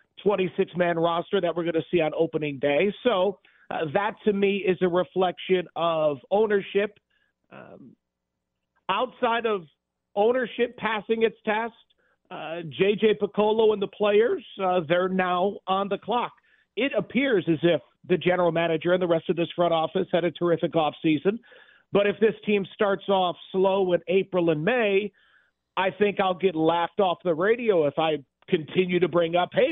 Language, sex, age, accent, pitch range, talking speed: English, male, 50-69, American, 175-210 Hz, 170 wpm